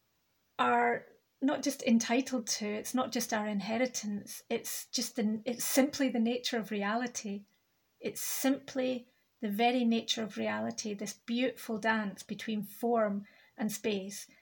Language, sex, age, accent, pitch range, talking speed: English, female, 30-49, British, 220-245 Hz, 135 wpm